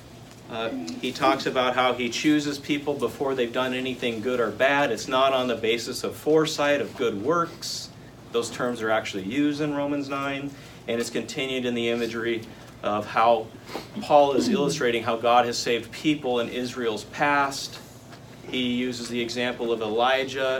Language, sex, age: English, male, 40-59